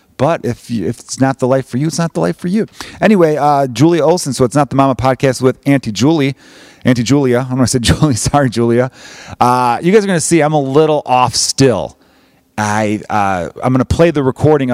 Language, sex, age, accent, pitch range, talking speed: English, male, 30-49, American, 105-130 Hz, 250 wpm